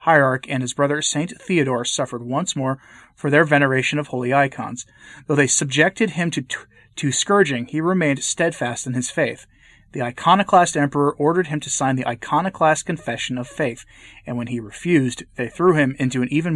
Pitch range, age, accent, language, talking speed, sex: 125-160 Hz, 30-49, American, English, 185 wpm, male